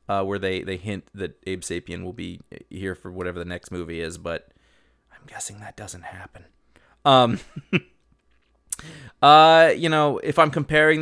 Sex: male